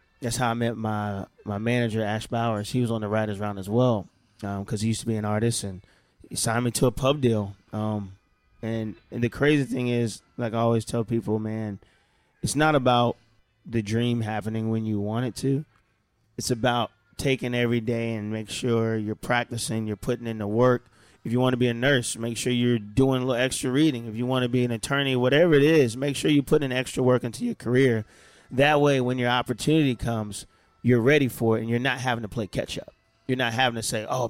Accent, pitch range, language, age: American, 110-125 Hz, English, 20-39